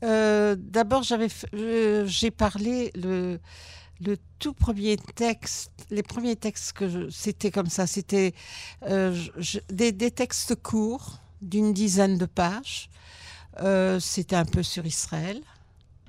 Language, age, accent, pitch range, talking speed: French, 60-79, French, 155-205 Hz, 135 wpm